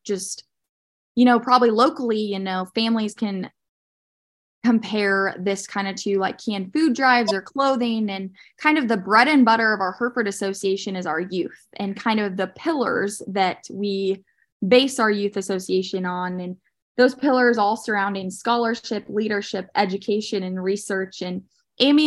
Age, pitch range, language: 10-29, 195-240 Hz, English